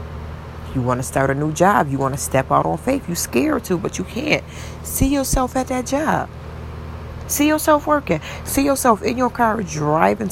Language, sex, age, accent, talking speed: English, female, 40-59, American, 200 wpm